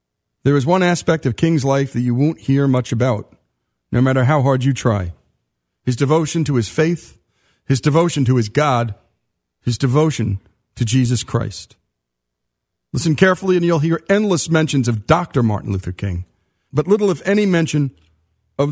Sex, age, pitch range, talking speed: male, 40-59, 110-160 Hz, 165 wpm